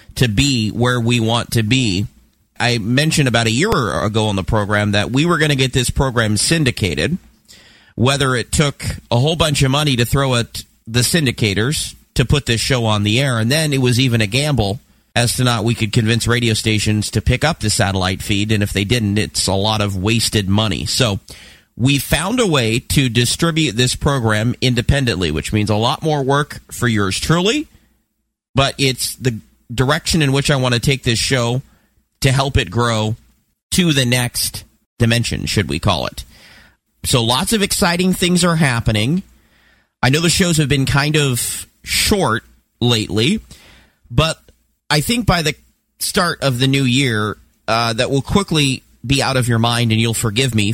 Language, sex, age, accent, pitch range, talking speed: English, male, 40-59, American, 110-135 Hz, 190 wpm